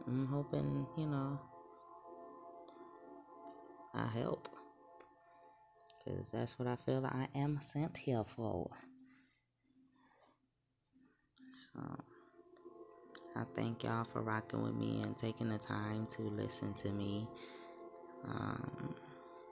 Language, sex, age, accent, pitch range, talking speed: English, female, 20-39, American, 100-130 Hz, 100 wpm